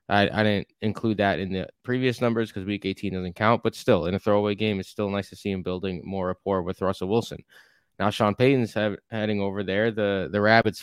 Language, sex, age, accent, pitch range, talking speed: English, male, 20-39, American, 100-120 Hz, 225 wpm